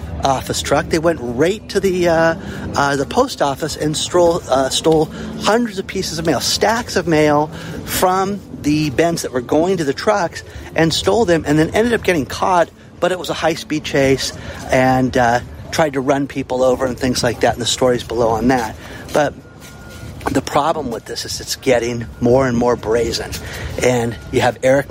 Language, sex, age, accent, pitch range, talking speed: English, male, 50-69, American, 130-175 Hz, 200 wpm